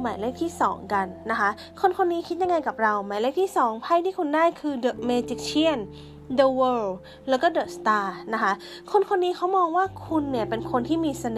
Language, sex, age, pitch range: Thai, female, 20-39, 215-300 Hz